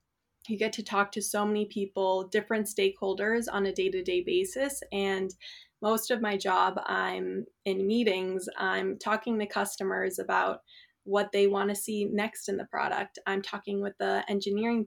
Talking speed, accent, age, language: 165 wpm, American, 20-39, English